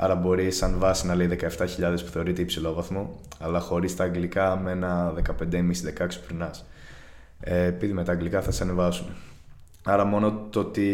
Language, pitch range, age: Greek, 85-95 Hz, 20-39